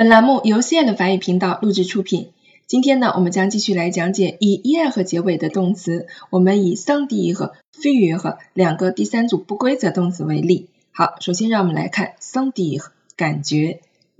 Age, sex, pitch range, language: 20-39, female, 175-225 Hz, Chinese